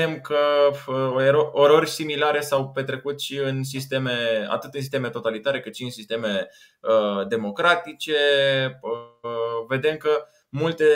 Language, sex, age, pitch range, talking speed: Romanian, male, 20-39, 115-150 Hz, 125 wpm